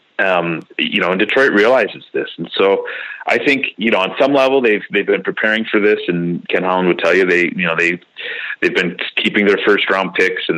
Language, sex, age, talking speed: English, male, 30-49, 225 wpm